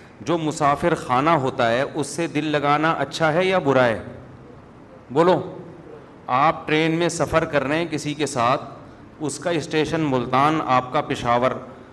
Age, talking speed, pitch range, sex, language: 40-59, 160 wpm, 140-170 Hz, male, Urdu